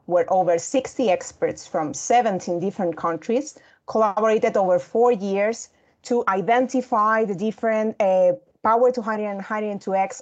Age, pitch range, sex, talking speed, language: 30-49, 185-240 Hz, female, 145 wpm, English